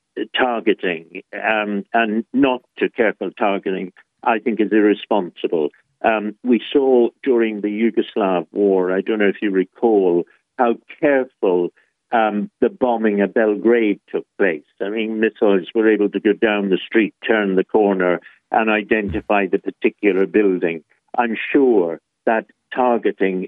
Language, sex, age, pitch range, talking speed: English, male, 60-79, 100-120 Hz, 140 wpm